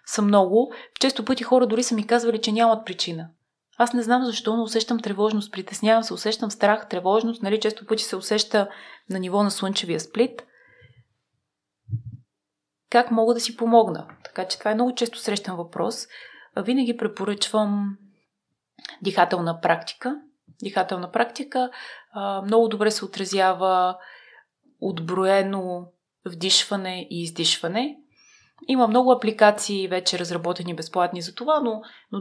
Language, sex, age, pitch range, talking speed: Bulgarian, female, 20-39, 180-230 Hz, 135 wpm